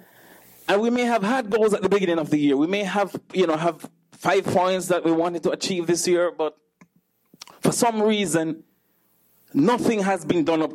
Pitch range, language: 140-210 Hz, English